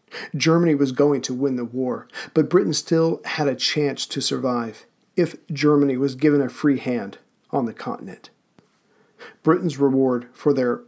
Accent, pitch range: American, 135-155 Hz